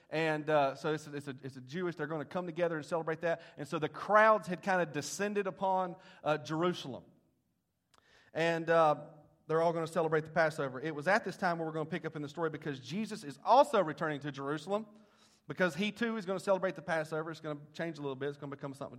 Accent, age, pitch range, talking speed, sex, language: American, 30-49, 150-190 Hz, 250 wpm, male, English